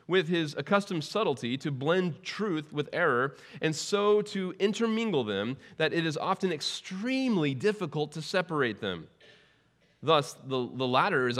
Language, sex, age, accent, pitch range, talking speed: English, male, 30-49, American, 115-155 Hz, 145 wpm